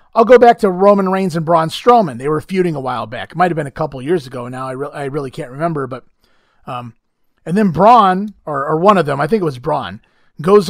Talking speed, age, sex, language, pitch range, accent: 245 wpm, 30-49, male, English, 160-215 Hz, American